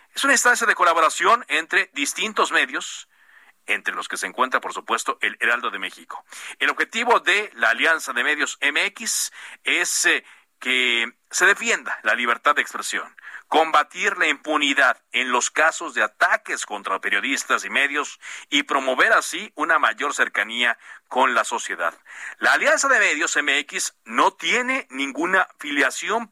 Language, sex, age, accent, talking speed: Spanish, male, 50-69, Mexican, 150 wpm